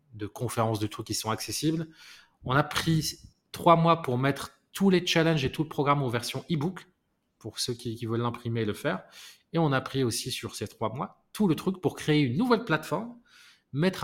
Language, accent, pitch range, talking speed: French, French, 115-160 Hz, 220 wpm